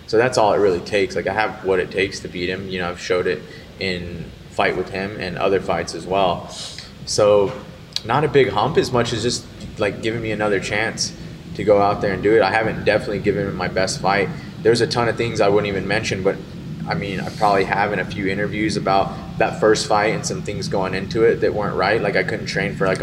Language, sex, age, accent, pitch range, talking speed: English, male, 20-39, American, 95-115 Hz, 250 wpm